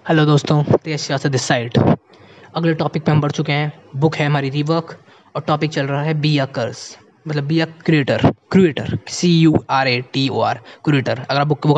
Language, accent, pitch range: Hindi, native, 140-175 Hz